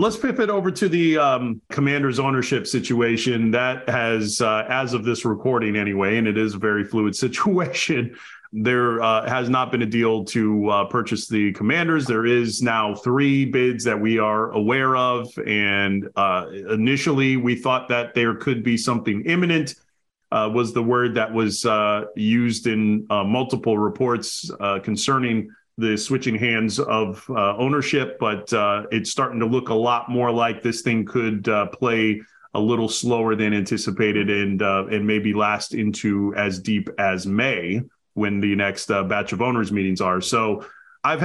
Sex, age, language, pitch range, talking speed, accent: male, 30-49, English, 110-130 Hz, 170 wpm, American